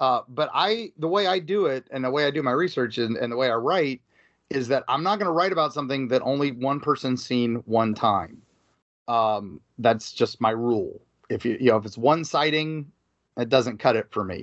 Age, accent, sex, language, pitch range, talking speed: 30-49, American, male, English, 115-160 Hz, 235 wpm